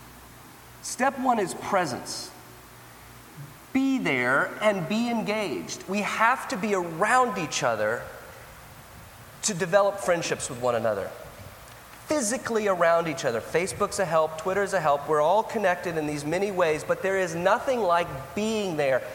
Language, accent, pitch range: English, American, 170-215 Hz